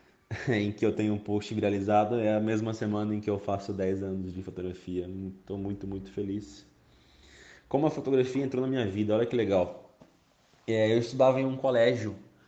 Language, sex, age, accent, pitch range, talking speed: Portuguese, male, 20-39, Brazilian, 95-115 Hz, 190 wpm